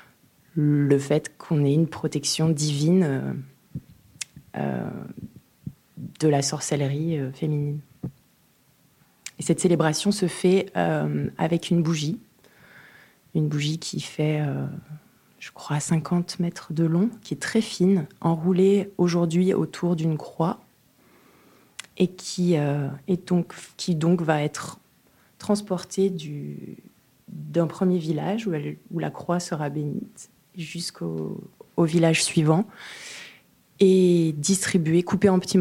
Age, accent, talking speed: 20-39, French, 125 wpm